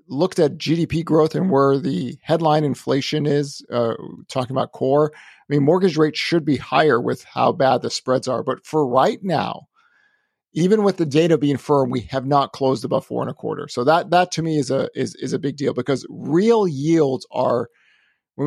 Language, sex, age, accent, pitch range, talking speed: English, male, 50-69, American, 130-155 Hz, 205 wpm